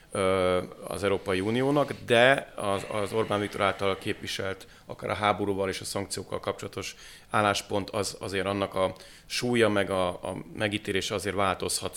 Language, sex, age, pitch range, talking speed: Hungarian, male, 30-49, 95-110 Hz, 145 wpm